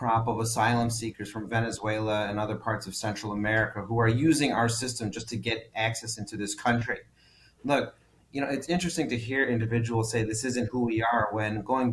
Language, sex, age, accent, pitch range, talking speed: English, male, 30-49, American, 110-130 Hz, 195 wpm